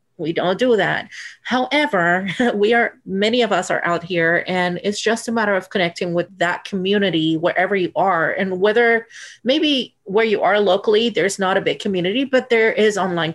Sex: female